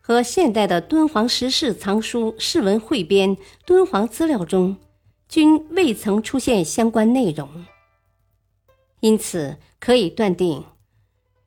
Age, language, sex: 50-69, Chinese, male